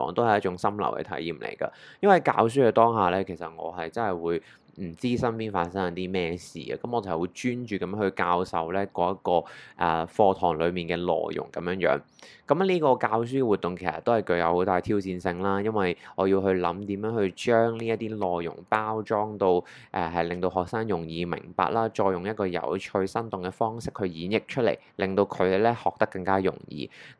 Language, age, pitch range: Chinese, 20-39, 90-115 Hz